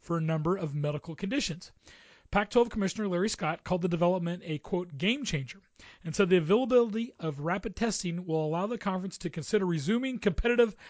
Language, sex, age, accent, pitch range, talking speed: English, male, 30-49, American, 165-205 Hz, 170 wpm